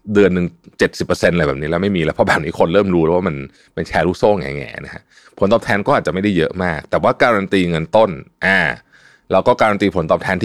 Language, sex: Thai, male